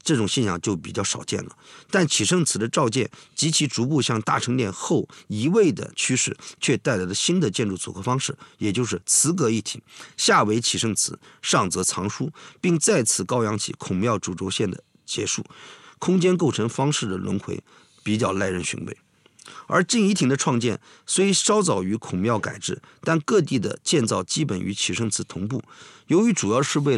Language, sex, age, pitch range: Chinese, male, 50-69, 105-170 Hz